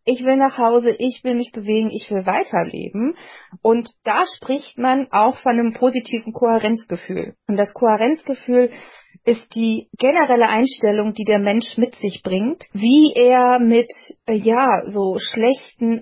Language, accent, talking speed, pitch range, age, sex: German, German, 145 wpm, 210-255 Hz, 30-49, female